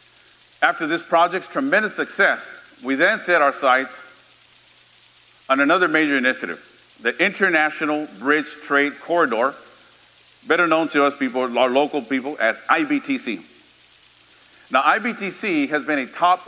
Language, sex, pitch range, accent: English, male, 140-180 Hz, American